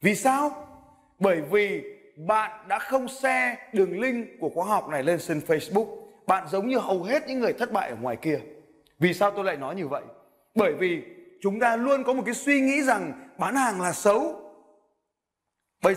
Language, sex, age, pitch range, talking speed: Vietnamese, male, 20-39, 180-250 Hz, 195 wpm